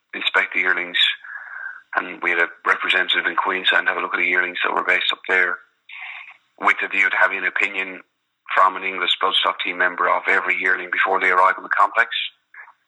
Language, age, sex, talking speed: English, 30-49, male, 210 wpm